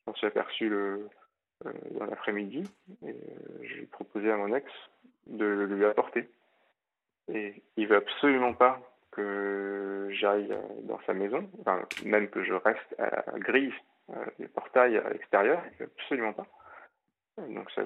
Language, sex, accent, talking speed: French, male, French, 160 wpm